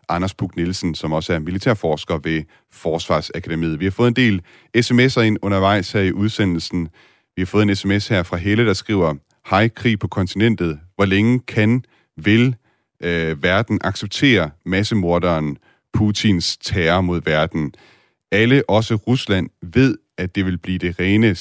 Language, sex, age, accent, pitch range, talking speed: Danish, male, 40-59, native, 85-110 Hz, 155 wpm